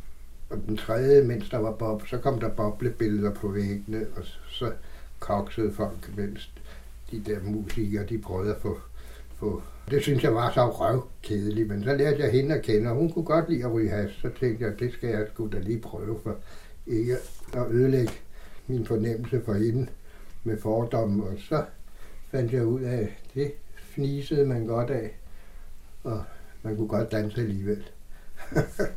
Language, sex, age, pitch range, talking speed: Danish, male, 60-79, 95-120 Hz, 180 wpm